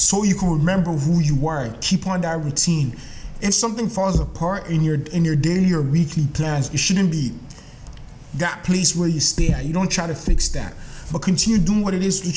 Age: 20-39